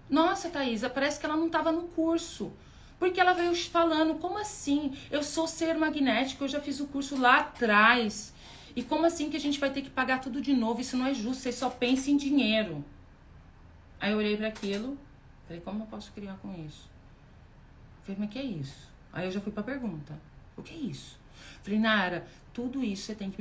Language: Portuguese